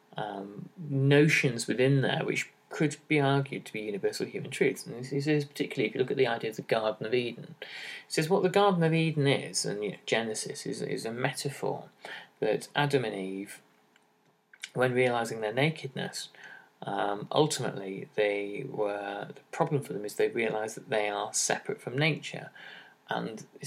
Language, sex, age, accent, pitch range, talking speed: English, male, 30-49, British, 110-150 Hz, 180 wpm